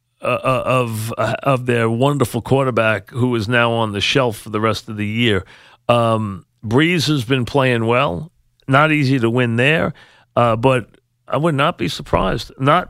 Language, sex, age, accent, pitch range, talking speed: English, male, 40-59, American, 115-130 Hz, 165 wpm